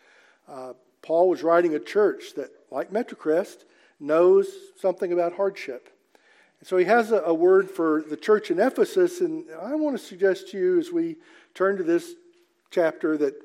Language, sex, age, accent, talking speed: English, male, 50-69, American, 170 wpm